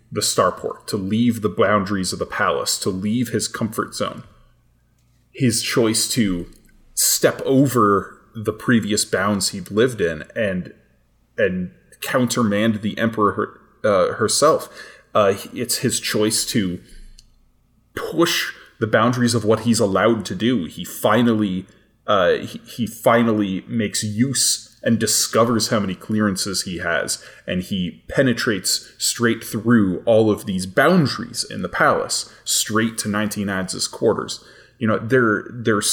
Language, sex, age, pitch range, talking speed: English, male, 20-39, 100-120 Hz, 140 wpm